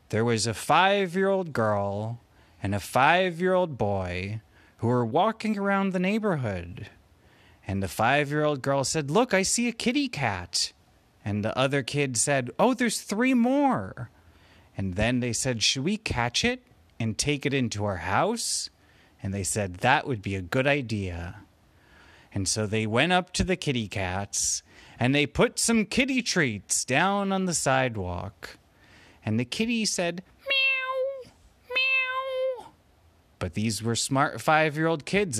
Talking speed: 150 wpm